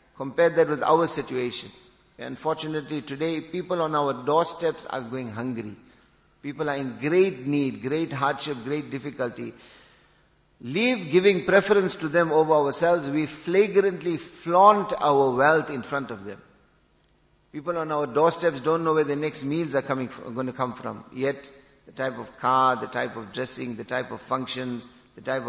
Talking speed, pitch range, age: 170 wpm, 130-160 Hz, 50-69